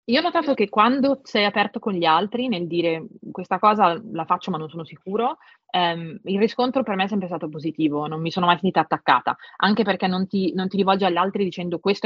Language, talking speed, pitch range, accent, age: Italian, 230 wpm, 165-205 Hz, native, 20-39